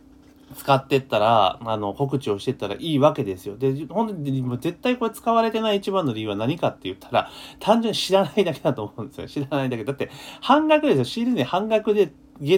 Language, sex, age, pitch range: Japanese, male, 30-49, 130-215 Hz